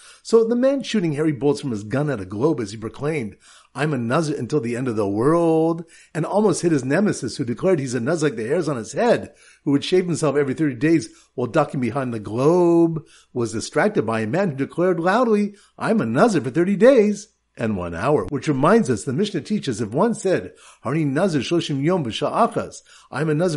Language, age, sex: English, 50-69, male